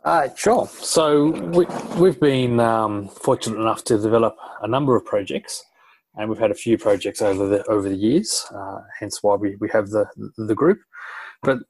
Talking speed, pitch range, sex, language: 185 wpm, 105-145 Hz, male, English